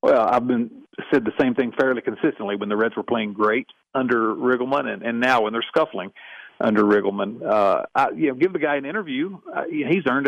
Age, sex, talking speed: 50-69, male, 215 wpm